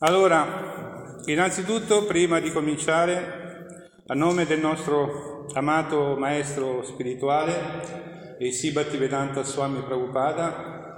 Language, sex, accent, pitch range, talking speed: Italian, male, native, 135-170 Hz, 95 wpm